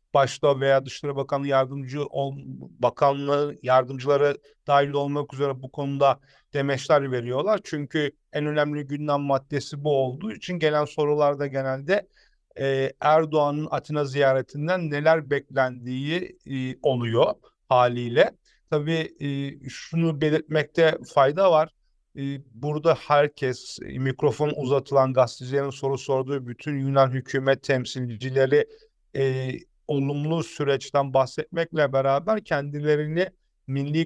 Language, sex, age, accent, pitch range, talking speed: Turkish, male, 50-69, native, 135-155 Hz, 105 wpm